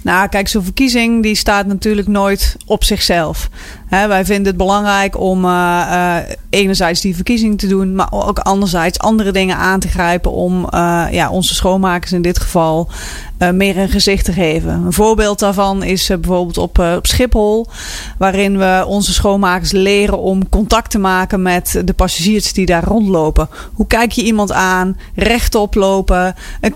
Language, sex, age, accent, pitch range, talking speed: Dutch, female, 30-49, Dutch, 180-205 Hz, 175 wpm